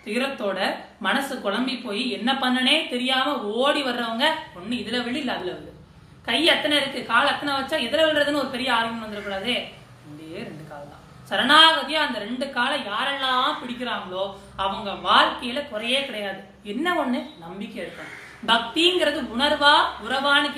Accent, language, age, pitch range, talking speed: native, Tamil, 30-49, 220-285 Hz, 120 wpm